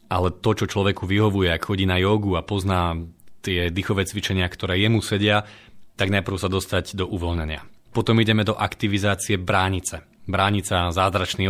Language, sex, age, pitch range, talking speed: Slovak, male, 30-49, 90-105 Hz, 155 wpm